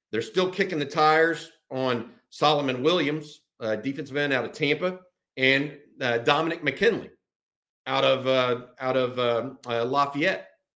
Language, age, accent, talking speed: English, 50-69, American, 145 wpm